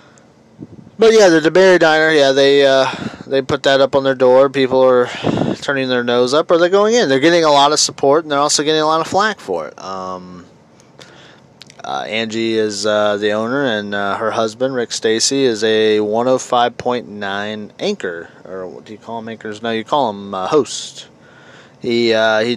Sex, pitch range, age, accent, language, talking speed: male, 105-145 Hz, 20-39, American, English, 195 wpm